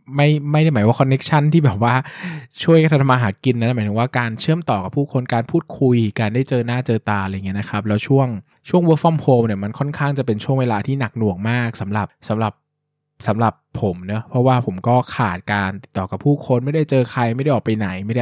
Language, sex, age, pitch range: Thai, male, 20-39, 110-145 Hz